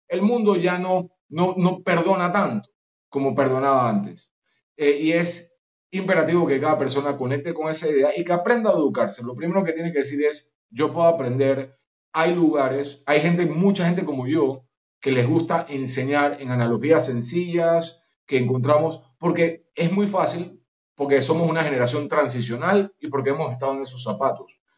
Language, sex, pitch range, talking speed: Spanish, male, 135-175 Hz, 170 wpm